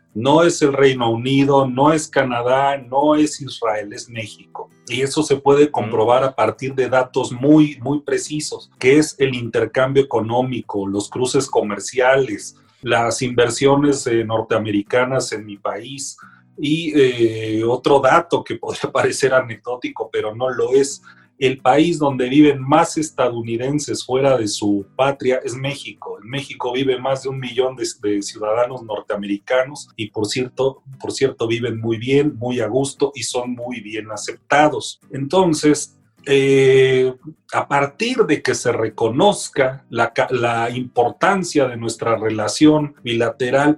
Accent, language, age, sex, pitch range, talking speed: Mexican, Spanish, 40-59, male, 120-145 Hz, 145 wpm